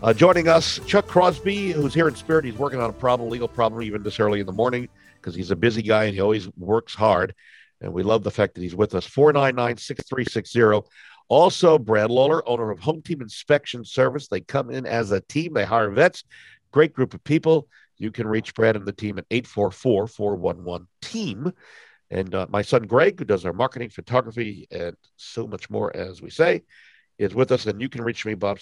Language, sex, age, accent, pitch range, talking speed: English, male, 50-69, American, 100-145 Hz, 210 wpm